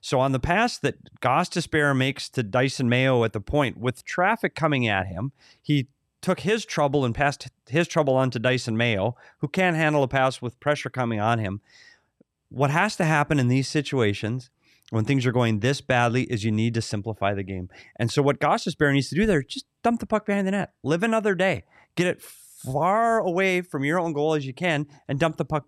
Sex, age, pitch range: male, 30-49, 120-165 Hz